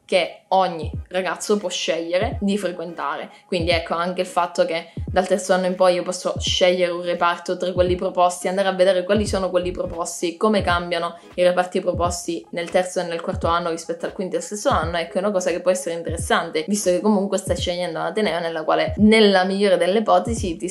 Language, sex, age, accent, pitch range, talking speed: Italian, female, 20-39, native, 175-195 Hz, 210 wpm